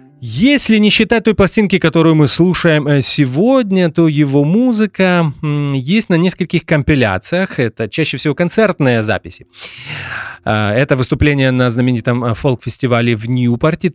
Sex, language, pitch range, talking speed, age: male, English, 125-180 Hz, 120 wpm, 30-49